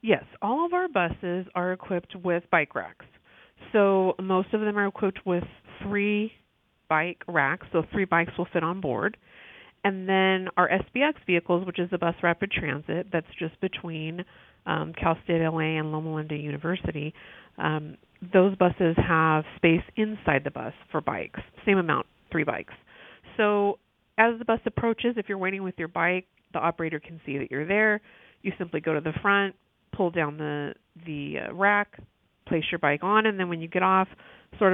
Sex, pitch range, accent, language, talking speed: female, 160-195 Hz, American, English, 180 wpm